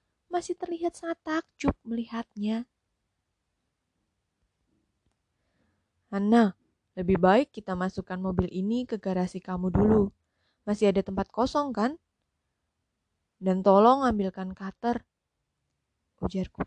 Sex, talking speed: female, 95 wpm